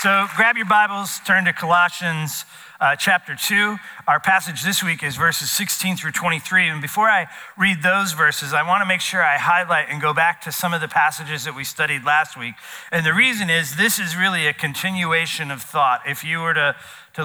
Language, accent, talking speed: English, American, 210 wpm